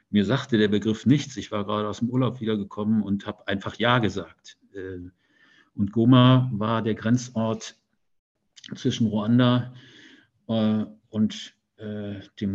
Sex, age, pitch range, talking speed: male, 50-69, 105-125 Hz, 125 wpm